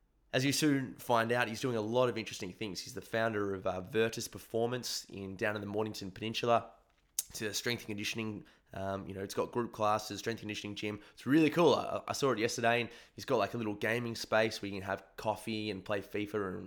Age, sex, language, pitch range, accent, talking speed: 20-39, male, English, 105-120 Hz, Australian, 240 wpm